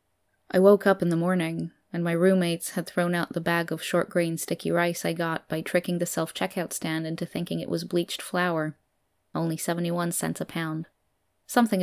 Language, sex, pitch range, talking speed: English, female, 155-180 Hz, 190 wpm